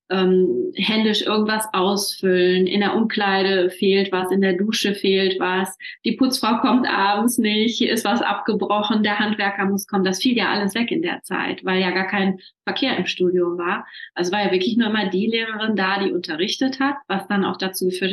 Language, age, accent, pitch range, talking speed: German, 30-49, German, 185-220 Hz, 195 wpm